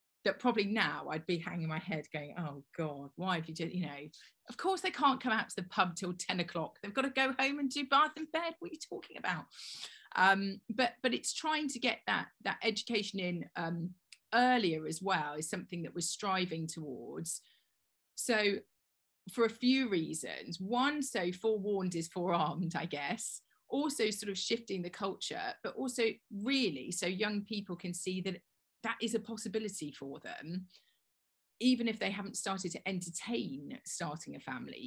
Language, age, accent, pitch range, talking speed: English, 30-49, British, 170-225 Hz, 185 wpm